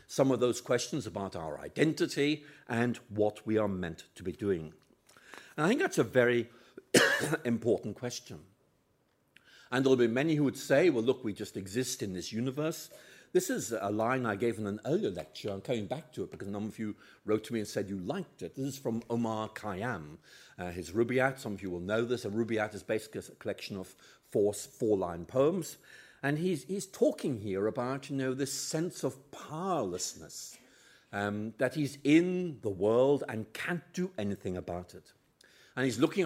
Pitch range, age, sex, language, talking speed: 105-140 Hz, 50-69, male, English, 190 wpm